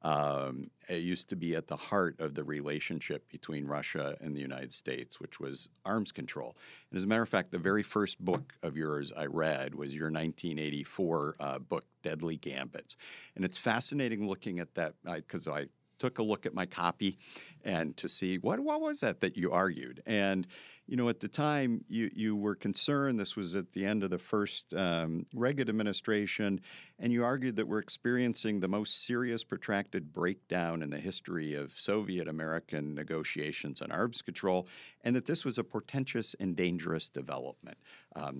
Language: English